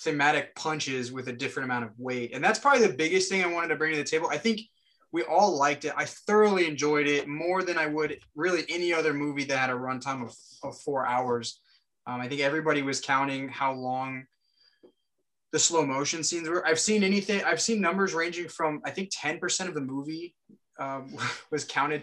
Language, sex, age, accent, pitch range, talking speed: English, male, 20-39, American, 135-185 Hz, 210 wpm